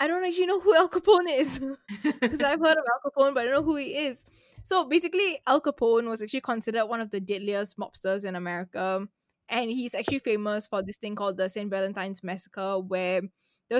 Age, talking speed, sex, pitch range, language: 10-29, 215 wpm, female, 200-255 Hz, English